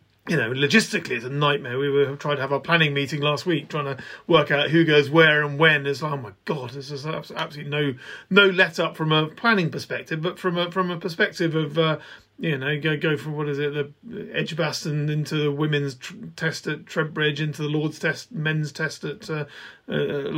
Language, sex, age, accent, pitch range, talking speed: English, male, 40-59, British, 145-170 Hz, 225 wpm